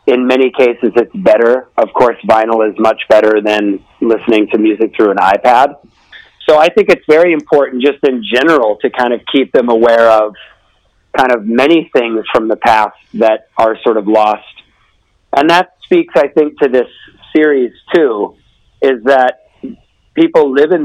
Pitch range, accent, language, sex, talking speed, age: 115-140 Hz, American, English, male, 175 wpm, 50-69